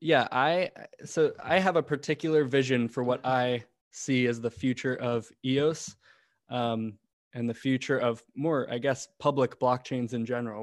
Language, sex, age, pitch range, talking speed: English, male, 20-39, 120-135 Hz, 165 wpm